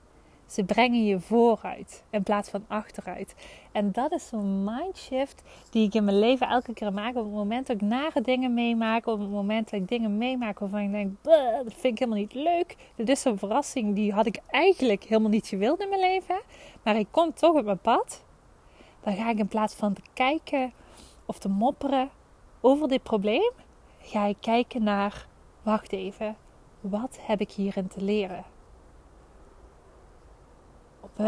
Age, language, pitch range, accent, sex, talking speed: 20-39, Dutch, 200-250 Hz, Dutch, female, 180 wpm